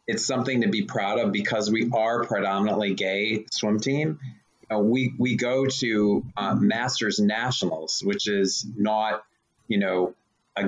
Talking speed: 150 wpm